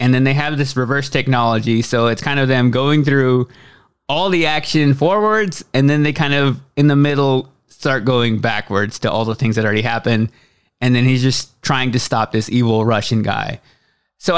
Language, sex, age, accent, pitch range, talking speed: English, male, 20-39, American, 120-155 Hz, 200 wpm